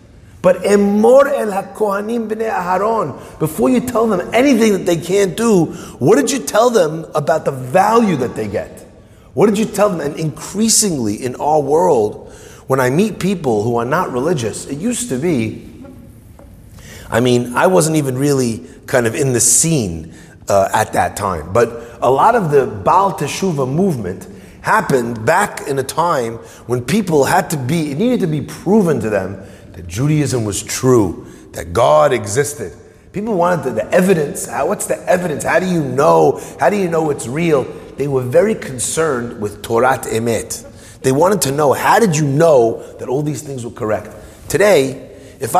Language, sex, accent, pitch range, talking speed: English, male, American, 115-190 Hz, 175 wpm